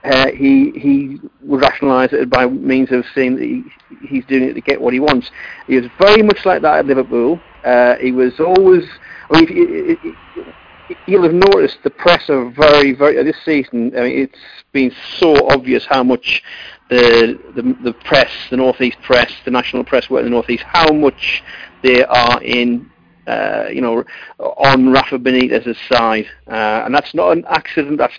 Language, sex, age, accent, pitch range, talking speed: English, male, 50-69, British, 125-150 Hz, 190 wpm